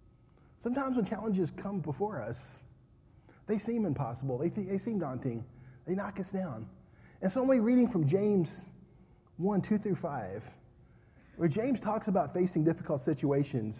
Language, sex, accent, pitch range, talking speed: English, male, American, 125-205 Hz, 165 wpm